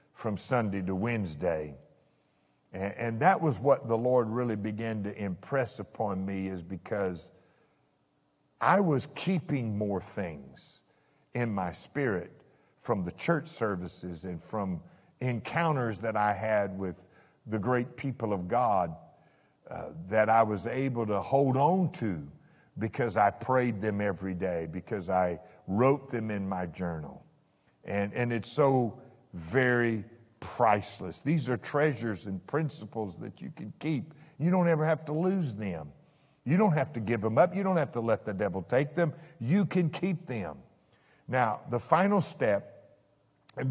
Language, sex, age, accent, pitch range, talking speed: English, male, 50-69, American, 95-135 Hz, 155 wpm